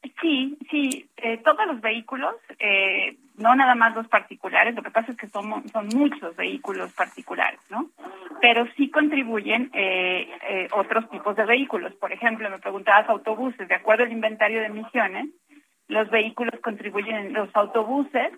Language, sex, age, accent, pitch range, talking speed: Spanish, female, 40-59, Mexican, 210-270 Hz, 155 wpm